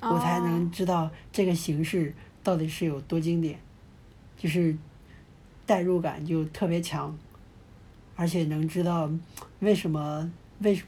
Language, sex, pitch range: Chinese, male, 155-190 Hz